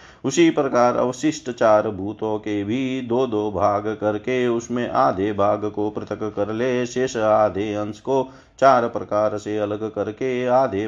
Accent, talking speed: native, 155 wpm